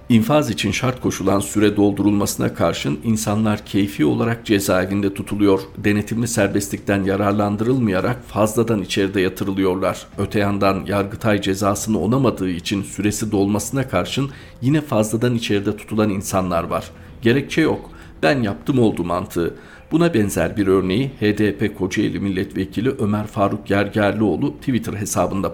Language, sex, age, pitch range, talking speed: Turkish, male, 50-69, 95-110 Hz, 120 wpm